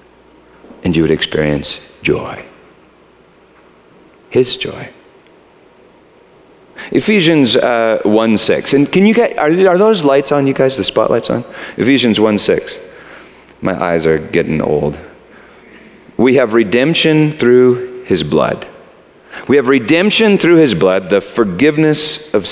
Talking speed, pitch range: 125 wpm, 155-250 Hz